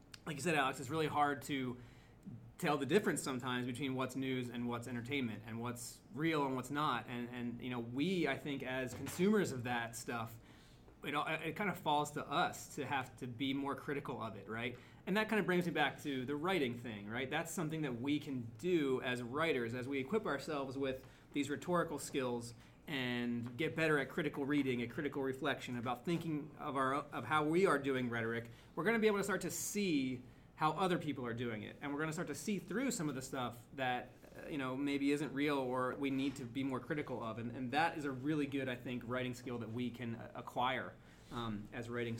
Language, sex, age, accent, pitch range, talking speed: English, male, 30-49, American, 125-155 Hz, 225 wpm